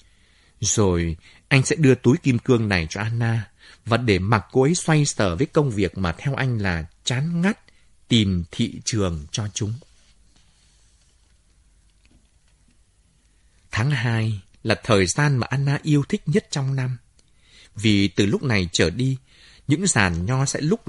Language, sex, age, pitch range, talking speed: Vietnamese, male, 30-49, 95-140 Hz, 155 wpm